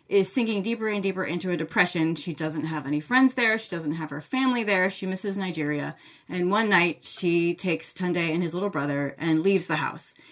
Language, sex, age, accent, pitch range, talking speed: English, female, 30-49, American, 160-205 Hz, 215 wpm